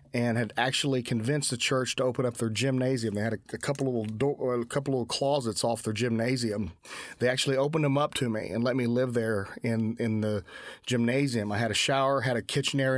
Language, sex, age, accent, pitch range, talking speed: English, male, 30-49, American, 115-135 Hz, 245 wpm